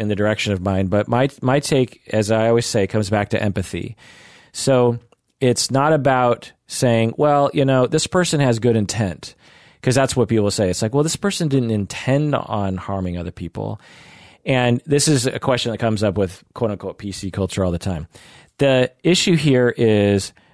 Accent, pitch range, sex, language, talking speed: American, 100-130 Hz, male, English, 195 wpm